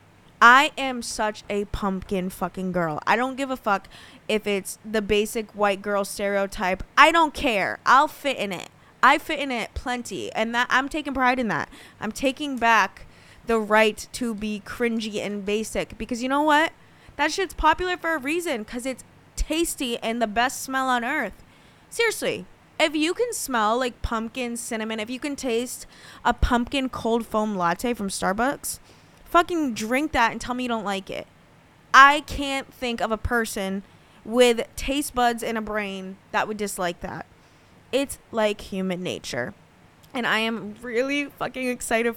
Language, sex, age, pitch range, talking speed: English, female, 20-39, 205-260 Hz, 175 wpm